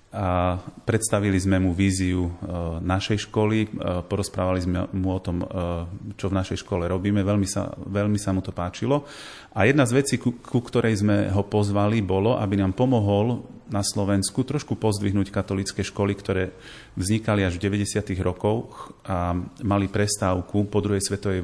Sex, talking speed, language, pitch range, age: male, 155 wpm, Slovak, 95-110 Hz, 30-49